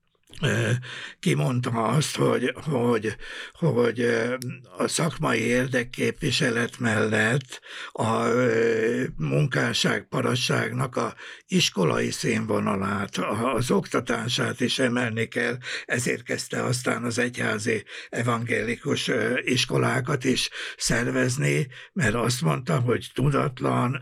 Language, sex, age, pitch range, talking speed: Hungarian, male, 60-79, 115-130 Hz, 85 wpm